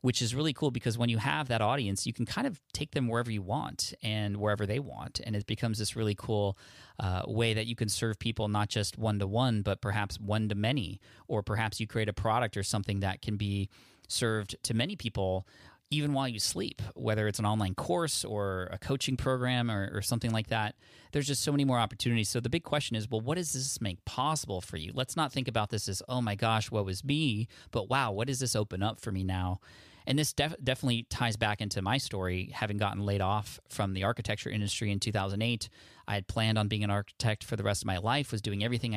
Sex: male